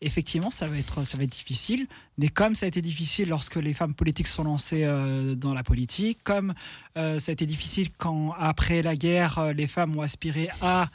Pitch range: 145-175 Hz